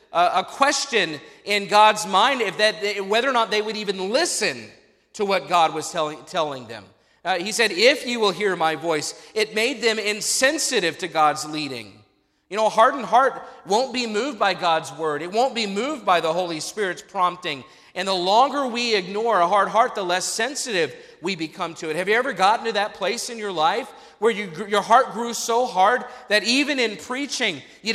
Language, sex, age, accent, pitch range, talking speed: English, male, 40-59, American, 185-245 Hz, 200 wpm